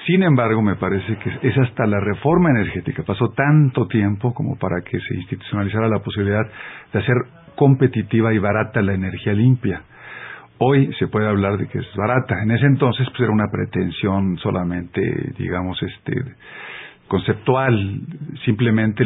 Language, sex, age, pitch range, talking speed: Spanish, male, 50-69, 100-125 Hz, 150 wpm